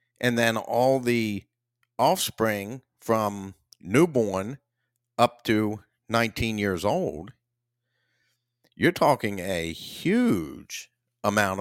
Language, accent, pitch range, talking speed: English, American, 95-120 Hz, 90 wpm